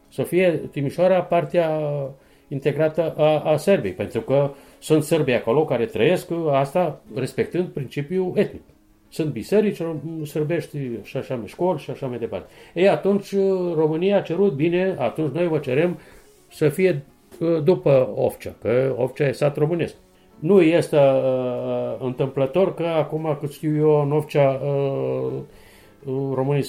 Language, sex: Romanian, male